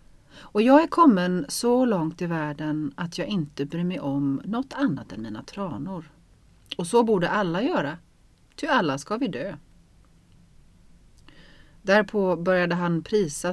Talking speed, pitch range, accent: 145 wpm, 150-200 Hz, native